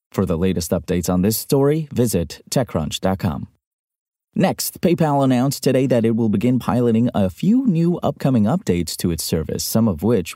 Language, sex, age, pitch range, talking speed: English, male, 30-49, 95-135 Hz, 170 wpm